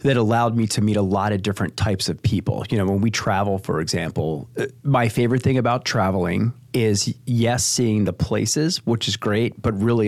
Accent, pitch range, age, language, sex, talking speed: American, 105-125 Hz, 30-49, English, male, 200 wpm